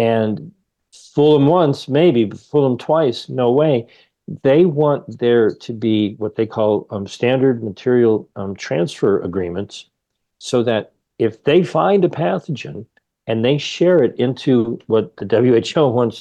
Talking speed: 150 wpm